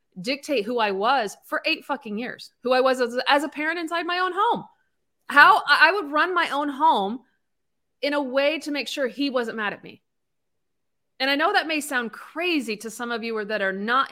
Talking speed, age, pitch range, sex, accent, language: 220 wpm, 30-49, 190-255 Hz, female, American, English